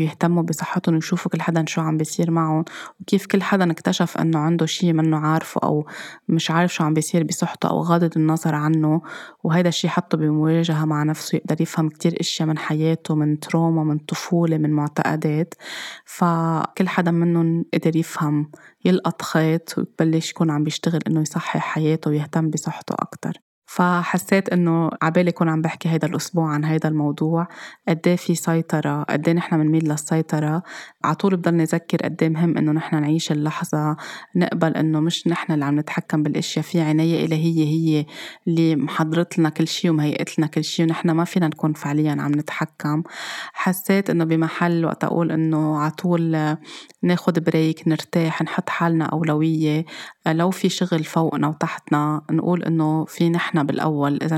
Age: 20-39